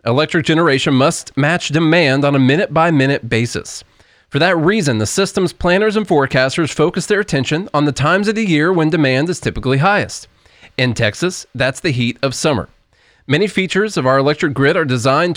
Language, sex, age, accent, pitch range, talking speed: English, male, 30-49, American, 130-180 Hz, 180 wpm